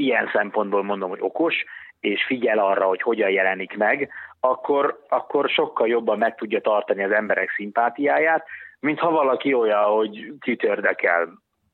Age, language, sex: 30-49, Hungarian, male